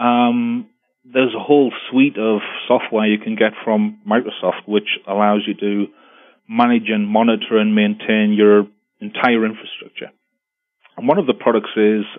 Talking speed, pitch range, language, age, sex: 150 wpm, 105-145 Hz, English, 30-49, male